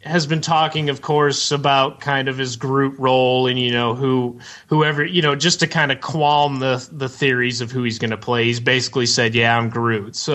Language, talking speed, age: English, 225 wpm, 30-49